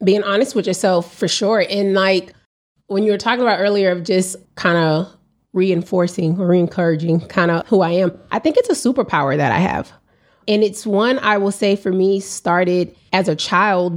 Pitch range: 170-200 Hz